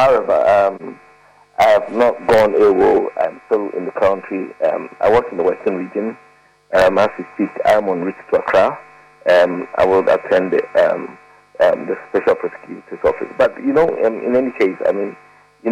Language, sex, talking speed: English, male, 190 wpm